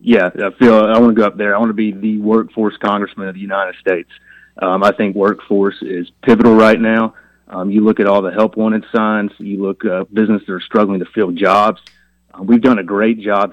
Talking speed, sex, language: 235 wpm, male, English